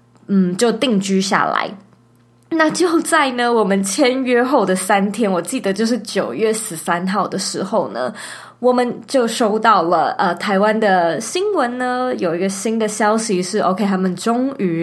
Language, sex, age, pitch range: Chinese, female, 20-39, 190-250 Hz